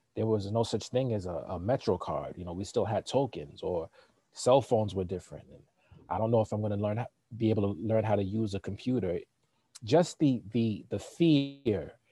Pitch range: 100-120 Hz